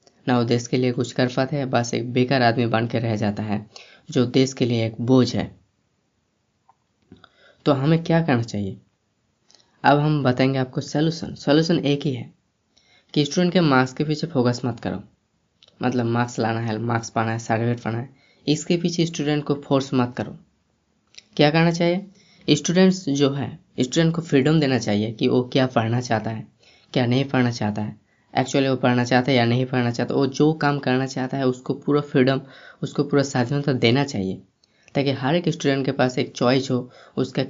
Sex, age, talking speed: female, 20-39, 190 wpm